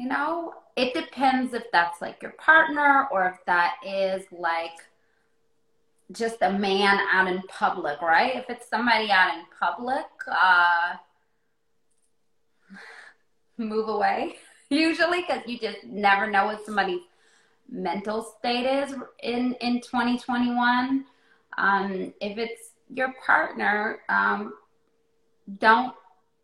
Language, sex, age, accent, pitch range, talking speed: English, female, 20-39, American, 195-245 Hz, 115 wpm